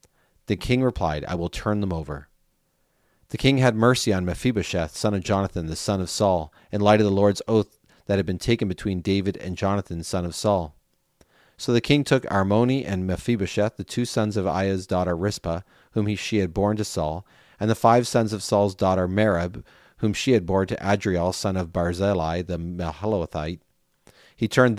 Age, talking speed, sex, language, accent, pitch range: 40-59, 195 wpm, male, English, American, 90-110 Hz